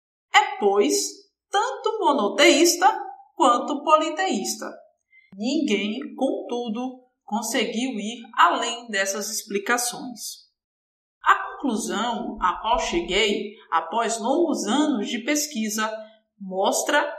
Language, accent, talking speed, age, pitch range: Portuguese, Brazilian, 85 wpm, 20-39, 220-320 Hz